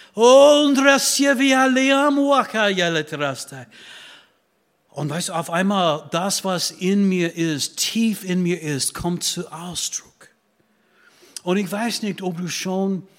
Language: German